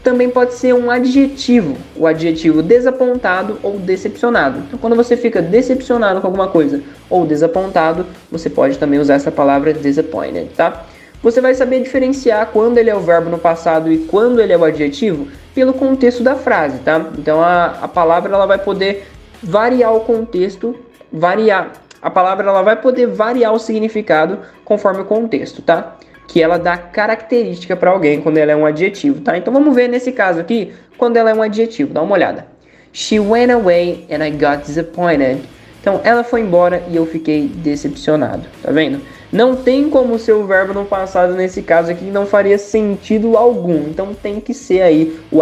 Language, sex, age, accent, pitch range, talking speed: Portuguese, male, 20-39, Brazilian, 160-235 Hz, 180 wpm